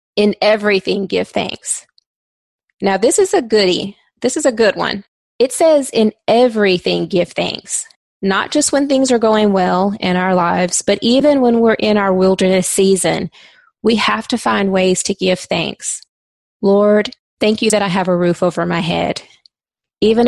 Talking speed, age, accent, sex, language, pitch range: 170 wpm, 20-39, American, female, English, 180-215 Hz